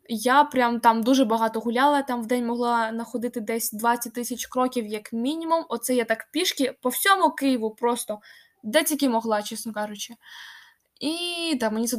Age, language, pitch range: 10-29, Ukrainian, 230-295 Hz